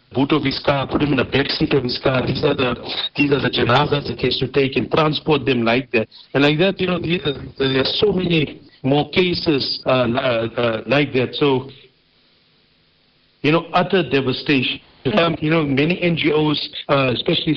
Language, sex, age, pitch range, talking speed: English, male, 60-79, 130-150 Hz, 200 wpm